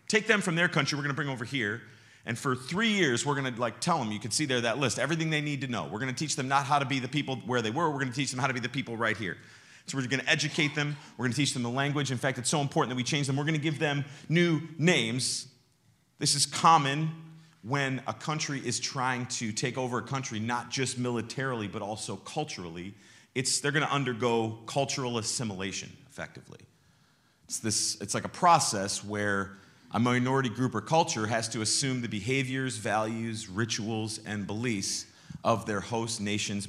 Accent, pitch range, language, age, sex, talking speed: American, 115-145 Hz, English, 40-59, male, 230 wpm